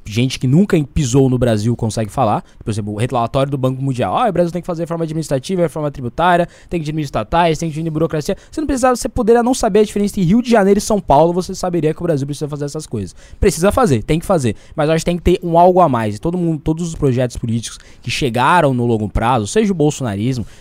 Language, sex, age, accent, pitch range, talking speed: Portuguese, male, 20-39, Brazilian, 125-175 Hz, 260 wpm